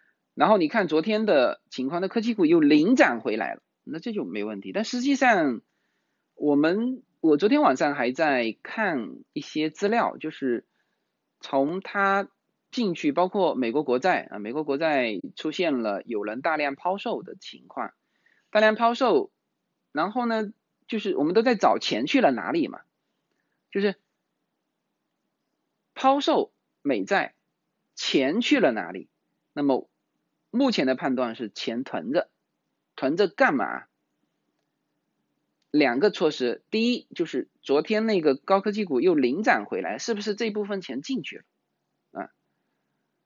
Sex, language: male, Chinese